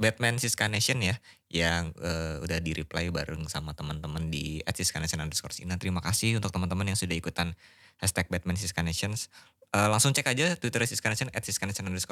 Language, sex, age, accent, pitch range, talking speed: Indonesian, male, 20-39, native, 85-120 Hz, 170 wpm